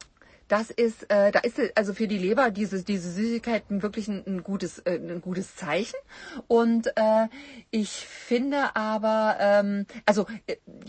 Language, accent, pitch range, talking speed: German, German, 185-240 Hz, 150 wpm